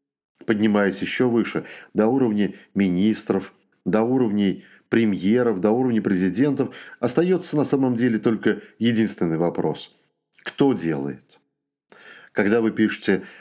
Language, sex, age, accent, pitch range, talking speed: Russian, male, 40-59, native, 95-125 Hz, 105 wpm